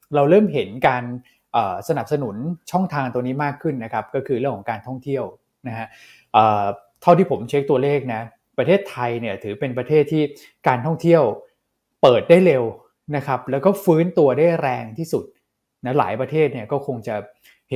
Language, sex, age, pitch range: Thai, male, 20-39, 120-150 Hz